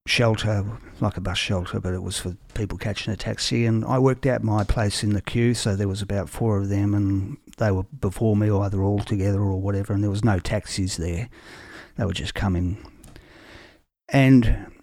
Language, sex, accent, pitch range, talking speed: English, male, Australian, 100-125 Hz, 205 wpm